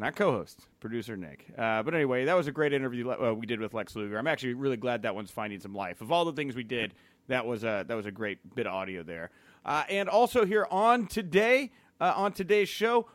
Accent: American